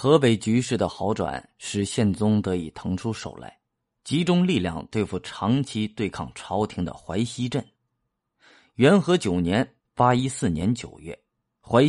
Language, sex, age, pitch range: Chinese, male, 30-49, 100-135 Hz